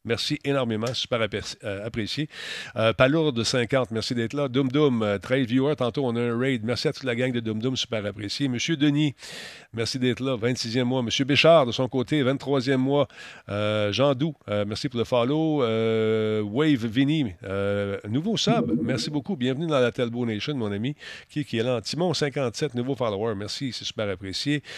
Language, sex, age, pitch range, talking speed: French, male, 50-69, 115-135 Hz, 185 wpm